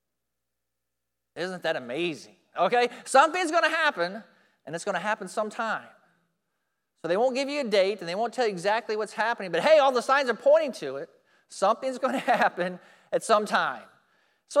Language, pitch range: English, 180-255 Hz